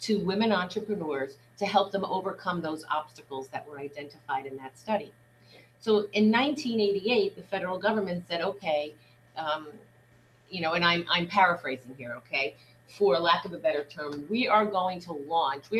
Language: English